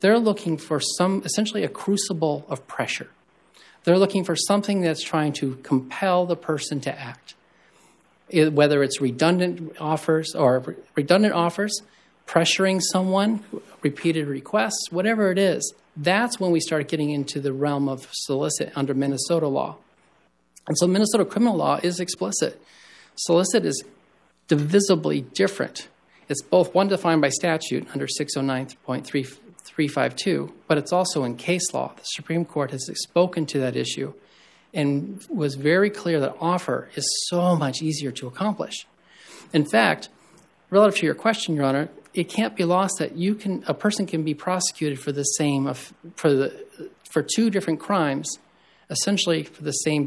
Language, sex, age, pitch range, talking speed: English, male, 40-59, 140-185 Hz, 155 wpm